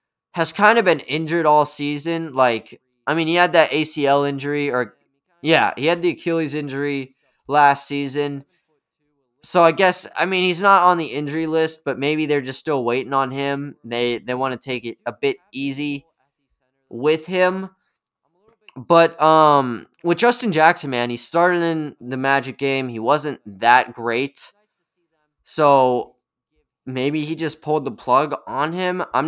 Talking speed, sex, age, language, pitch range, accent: 165 wpm, male, 20-39, English, 135-165 Hz, American